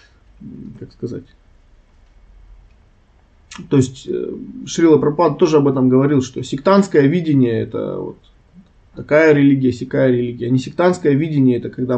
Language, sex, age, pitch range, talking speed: Russian, male, 20-39, 125-155 Hz, 120 wpm